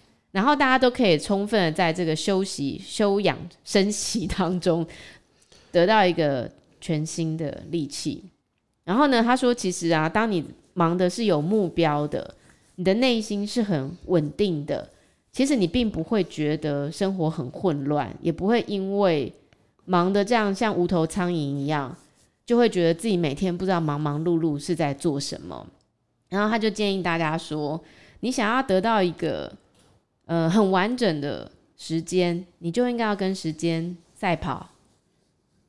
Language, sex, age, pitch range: Chinese, female, 20-39, 155-195 Hz